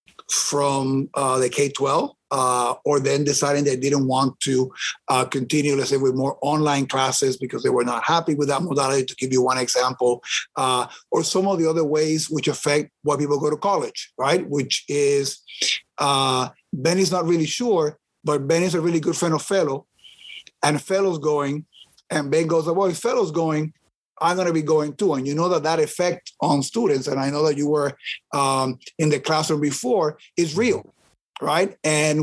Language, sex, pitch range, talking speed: English, male, 140-165 Hz, 195 wpm